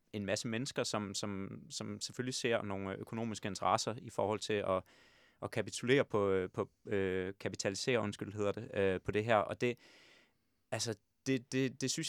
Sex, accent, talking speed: male, native, 170 wpm